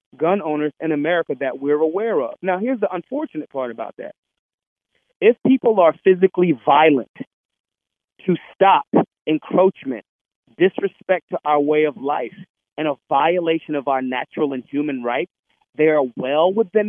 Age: 40-59